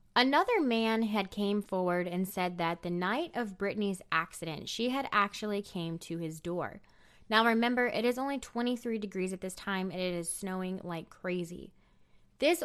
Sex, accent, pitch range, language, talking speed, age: female, American, 180-230 Hz, English, 175 wpm, 20-39